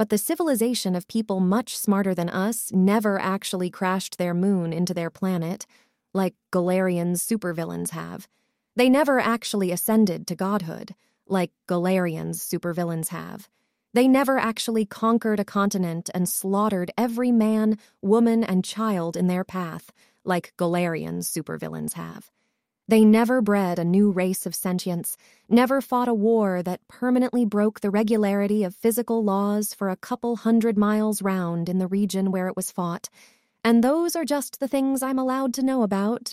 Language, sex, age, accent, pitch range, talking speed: English, female, 20-39, American, 180-225 Hz, 155 wpm